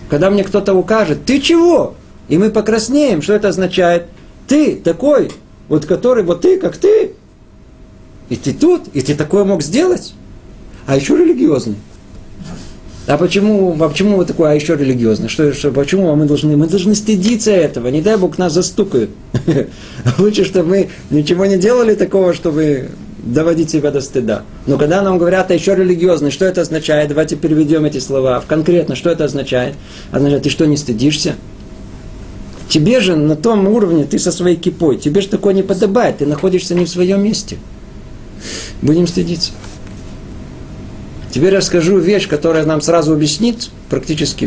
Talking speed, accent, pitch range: 160 wpm, native, 140-195 Hz